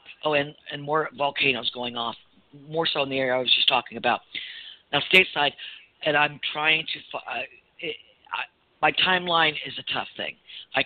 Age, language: 50-69, English